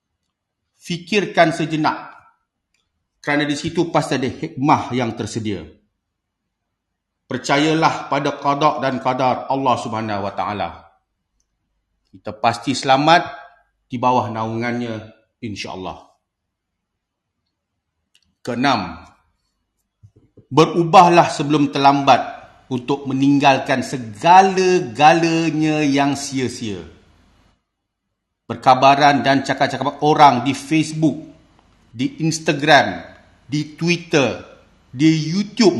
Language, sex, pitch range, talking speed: English, male, 100-155 Hz, 80 wpm